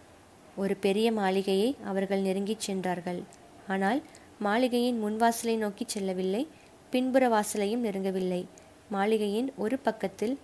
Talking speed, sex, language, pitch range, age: 100 wpm, female, Tamil, 200-235 Hz, 20-39